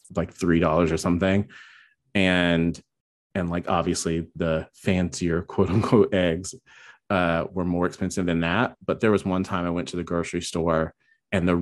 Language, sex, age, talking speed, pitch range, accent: English, male, 30-49, 170 wpm, 80-95 Hz, American